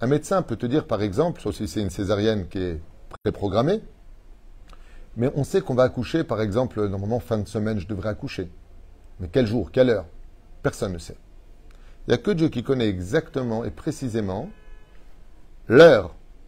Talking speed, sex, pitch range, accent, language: 180 wpm, male, 90-125 Hz, French, French